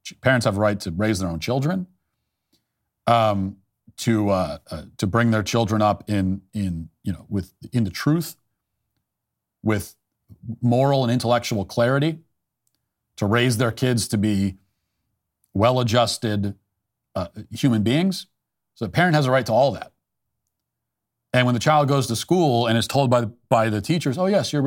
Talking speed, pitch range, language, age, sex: 165 wpm, 105-135 Hz, English, 40-59, male